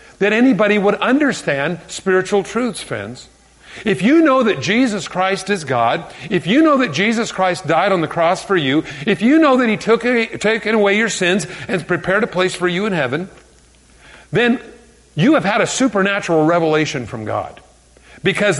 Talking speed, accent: 175 wpm, American